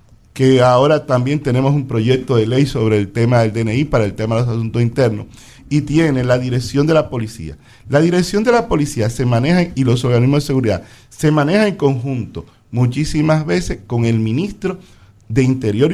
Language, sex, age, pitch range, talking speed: Spanish, male, 50-69, 115-150 Hz, 190 wpm